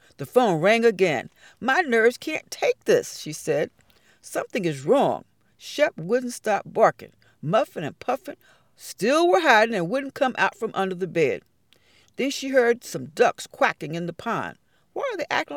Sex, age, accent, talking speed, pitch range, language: female, 60-79, American, 175 wpm, 180-275 Hz, English